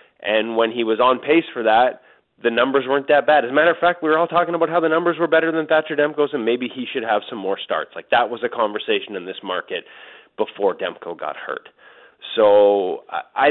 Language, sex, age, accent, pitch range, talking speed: English, male, 20-39, American, 120-160 Hz, 235 wpm